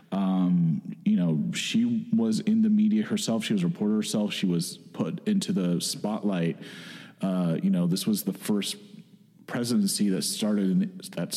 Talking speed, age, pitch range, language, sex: 175 wpm, 40-59, 170-215 Hz, English, male